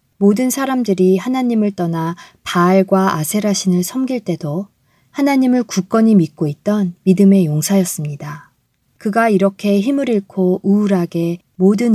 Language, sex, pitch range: Korean, female, 165-210 Hz